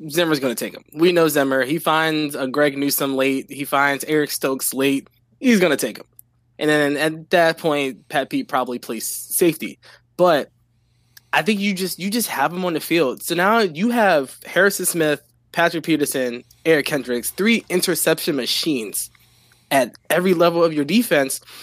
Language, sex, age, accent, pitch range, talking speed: English, male, 20-39, American, 140-180 Hz, 180 wpm